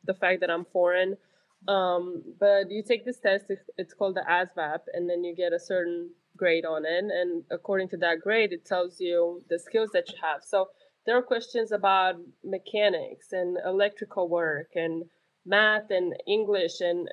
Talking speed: 180 wpm